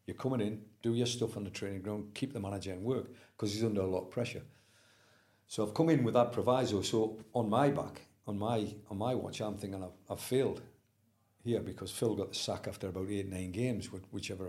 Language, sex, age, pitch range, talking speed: English, male, 50-69, 100-120 Hz, 230 wpm